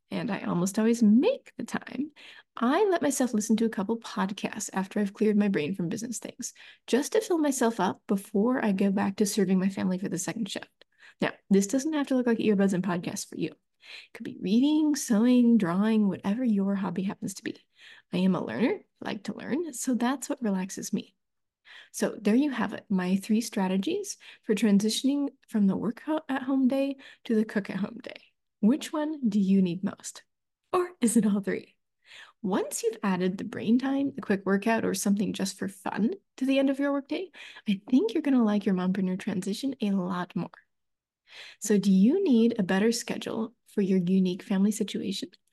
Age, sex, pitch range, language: 30-49, female, 200-260 Hz, English